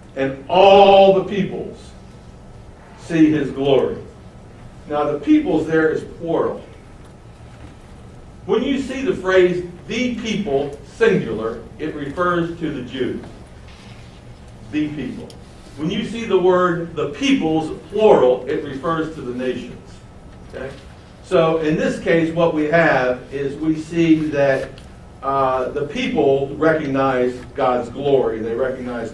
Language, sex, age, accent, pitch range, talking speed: English, male, 60-79, American, 125-170 Hz, 125 wpm